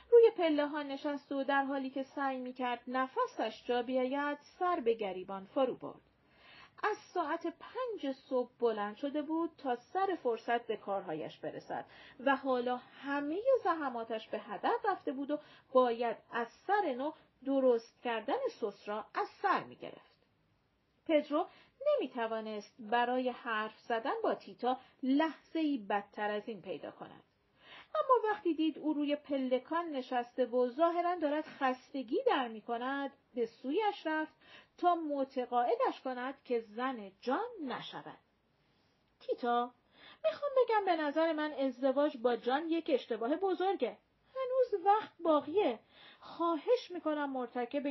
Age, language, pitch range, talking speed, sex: 40-59, Persian, 245-335 Hz, 130 wpm, female